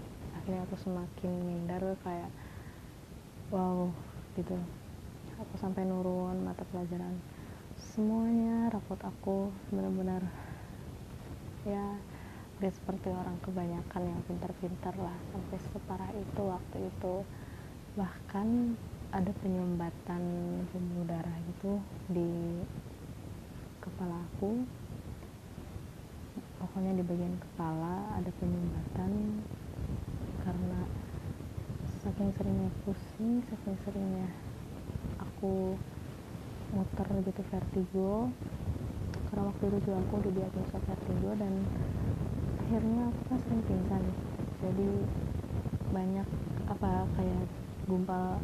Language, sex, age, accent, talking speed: Indonesian, female, 20-39, native, 90 wpm